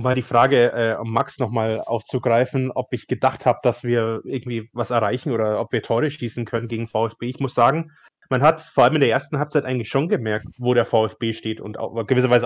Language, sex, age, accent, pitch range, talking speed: German, male, 20-39, German, 115-140 Hz, 220 wpm